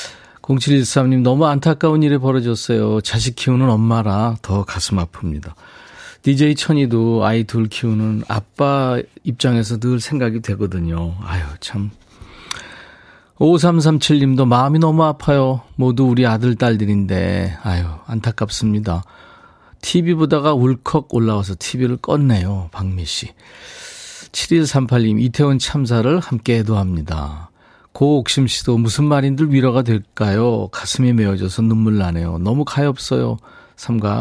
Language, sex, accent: Korean, male, native